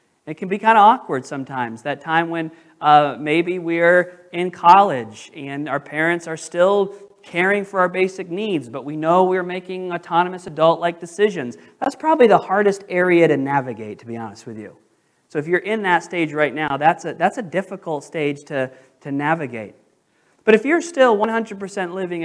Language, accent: English, American